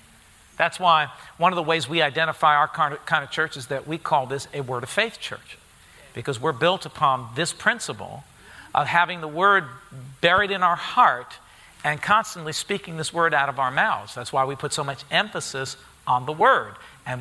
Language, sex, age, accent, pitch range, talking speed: English, male, 50-69, American, 140-185 Hz, 195 wpm